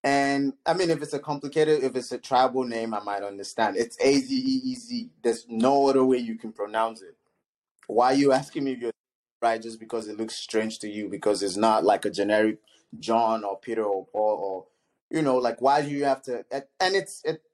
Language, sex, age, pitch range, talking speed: English, male, 20-39, 110-145 Hz, 220 wpm